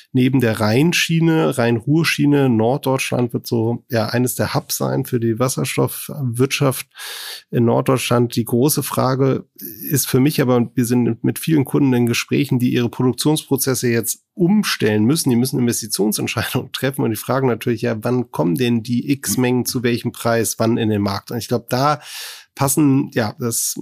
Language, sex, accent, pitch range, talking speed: German, male, German, 115-130 Hz, 165 wpm